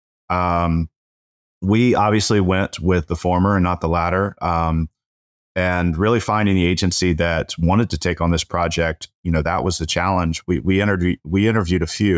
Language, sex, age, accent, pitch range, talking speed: English, male, 30-49, American, 80-100 Hz, 180 wpm